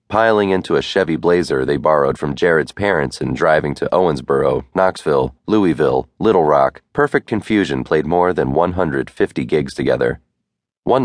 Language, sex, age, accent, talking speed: English, male, 30-49, American, 145 wpm